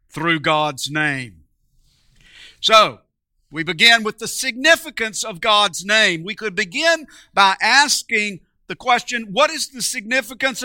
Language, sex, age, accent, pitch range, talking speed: English, male, 50-69, American, 185-265 Hz, 130 wpm